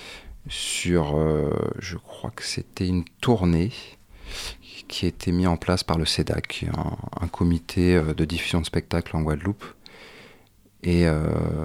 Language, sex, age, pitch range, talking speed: French, male, 30-49, 85-95 Hz, 145 wpm